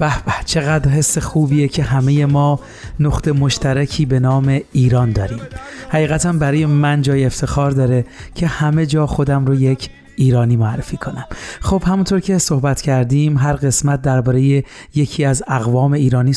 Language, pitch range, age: Persian, 130-150 Hz, 30-49